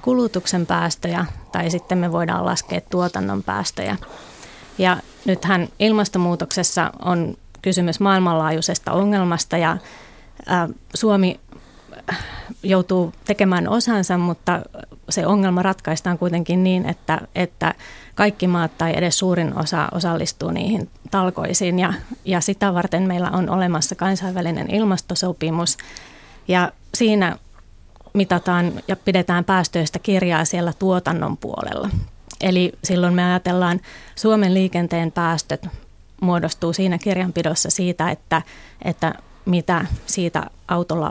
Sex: female